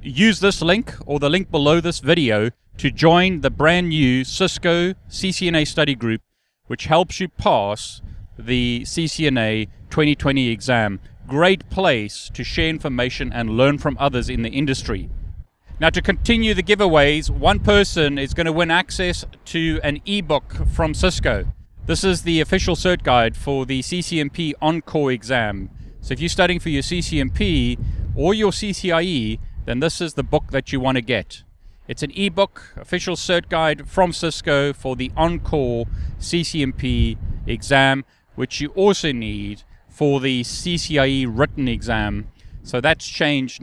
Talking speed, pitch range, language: 150 wpm, 115-165 Hz, English